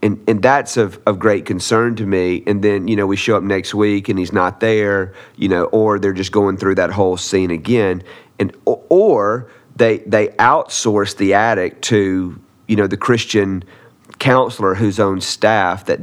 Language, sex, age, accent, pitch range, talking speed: English, male, 40-59, American, 95-110 Hz, 185 wpm